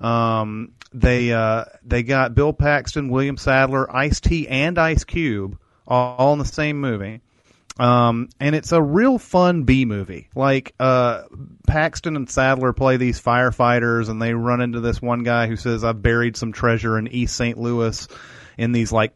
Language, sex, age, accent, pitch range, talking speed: English, male, 30-49, American, 110-125 Hz, 170 wpm